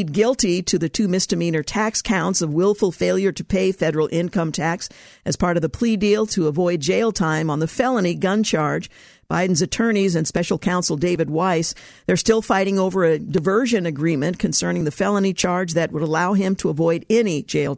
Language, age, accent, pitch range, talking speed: English, 50-69, American, 165-205 Hz, 190 wpm